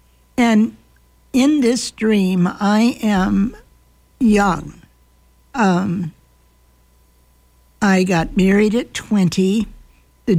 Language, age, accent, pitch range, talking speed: English, 60-79, American, 155-215 Hz, 80 wpm